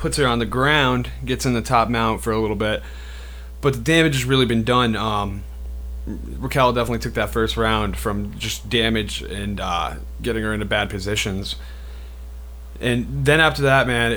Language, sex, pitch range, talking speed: English, male, 100-125 Hz, 180 wpm